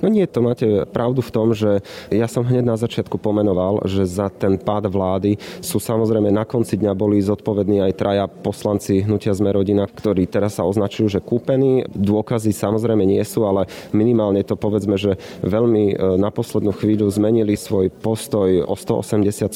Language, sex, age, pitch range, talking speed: Slovak, male, 30-49, 100-110 Hz, 170 wpm